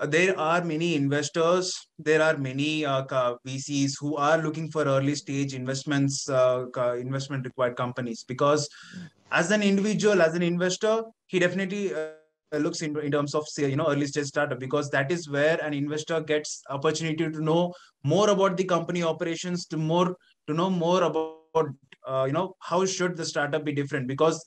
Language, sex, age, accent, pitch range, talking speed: Hindi, male, 20-39, native, 140-165 Hz, 175 wpm